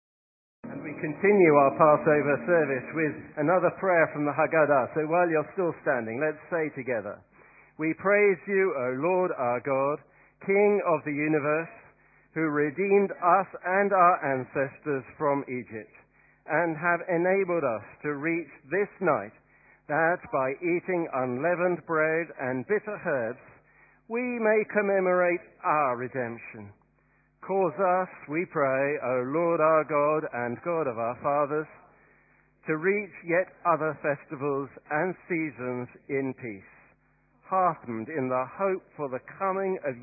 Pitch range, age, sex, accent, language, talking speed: 130-175 Hz, 50-69, male, British, English, 130 wpm